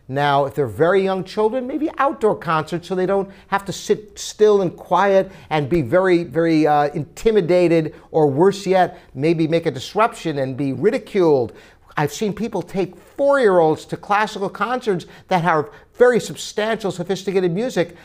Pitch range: 165-230 Hz